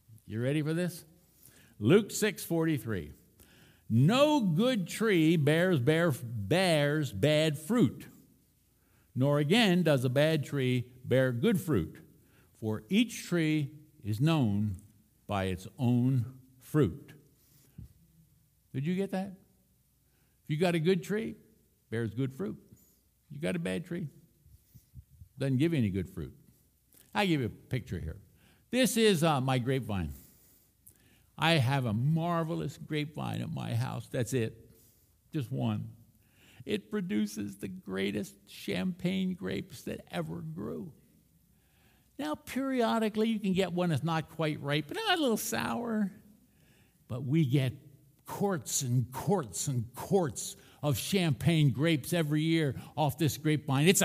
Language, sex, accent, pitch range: English, male, American, 115-175 Hz